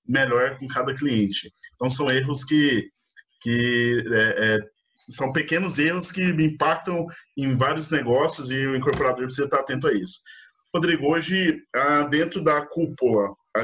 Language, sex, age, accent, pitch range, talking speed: Portuguese, male, 20-39, Brazilian, 130-165 Hz, 140 wpm